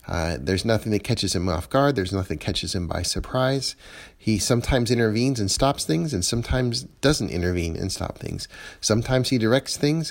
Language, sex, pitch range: English, male, 95-115 Hz